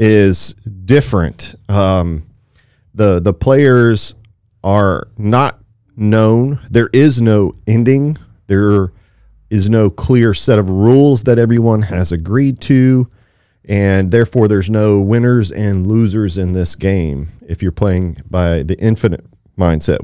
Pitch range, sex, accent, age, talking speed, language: 95-115 Hz, male, American, 40-59, 125 wpm, English